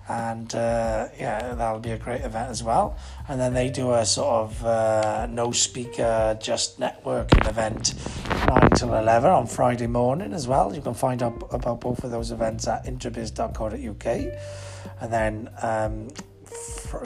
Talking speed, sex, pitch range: 160 wpm, male, 110-125 Hz